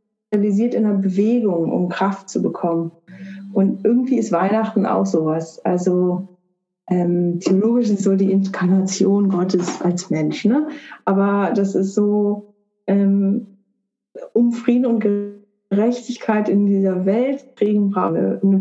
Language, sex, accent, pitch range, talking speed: German, female, German, 190-235 Hz, 120 wpm